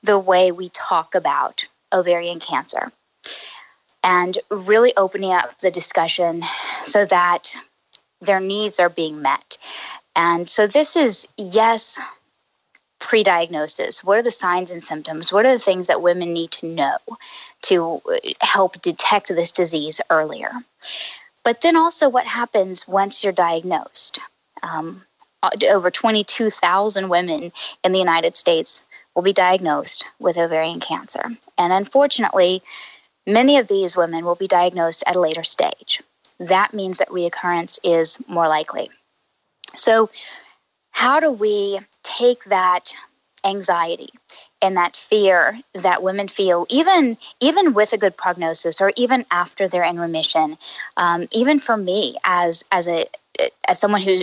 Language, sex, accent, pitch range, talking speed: English, female, American, 175-225 Hz, 135 wpm